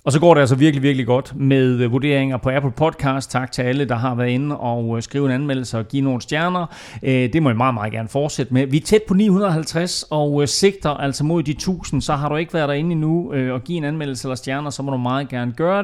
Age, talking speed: 30-49, 250 wpm